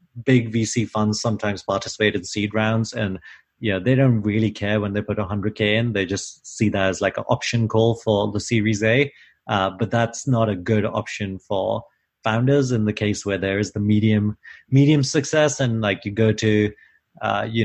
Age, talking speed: 30-49, 205 wpm